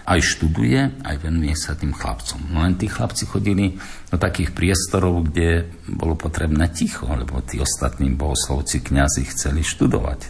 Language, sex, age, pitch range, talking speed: Slovak, male, 60-79, 75-90 Hz, 145 wpm